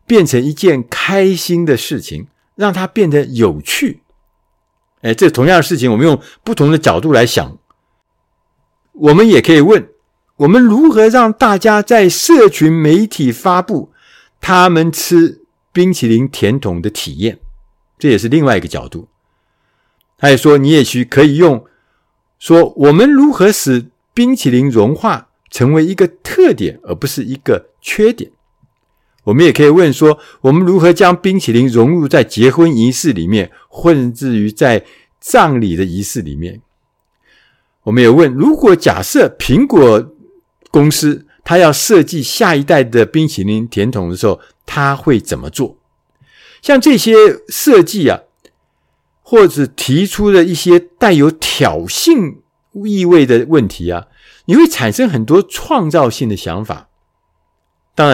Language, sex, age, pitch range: Chinese, male, 50-69, 125-195 Hz